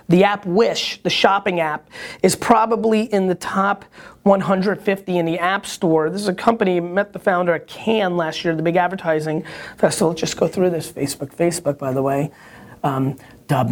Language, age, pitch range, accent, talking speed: English, 30-49, 155-200 Hz, American, 185 wpm